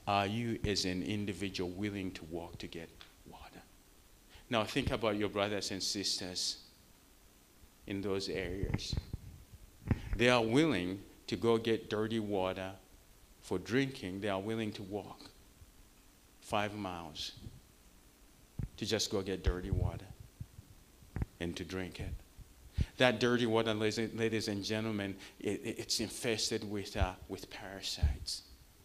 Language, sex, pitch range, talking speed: English, male, 95-110 Hz, 125 wpm